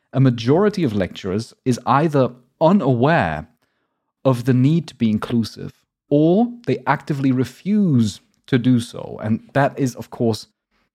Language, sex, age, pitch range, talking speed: English, male, 30-49, 125-170 Hz, 135 wpm